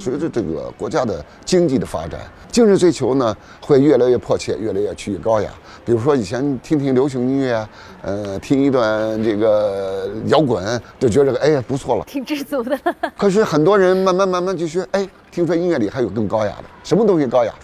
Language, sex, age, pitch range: Chinese, male, 50-69, 115-180 Hz